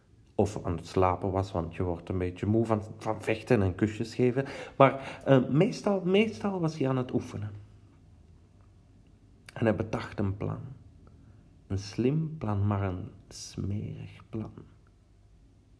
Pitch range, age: 95-115 Hz, 40-59